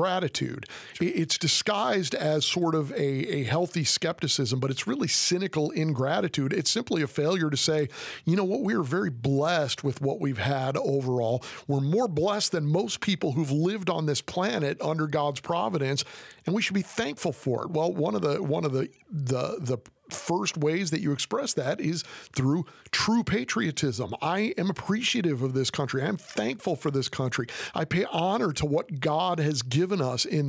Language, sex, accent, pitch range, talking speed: English, male, American, 140-175 Hz, 190 wpm